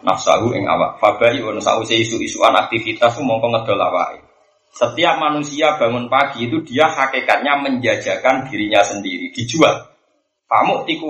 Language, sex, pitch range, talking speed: Indonesian, male, 110-155 Hz, 130 wpm